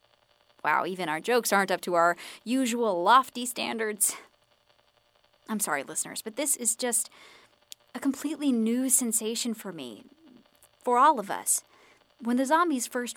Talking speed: 145 wpm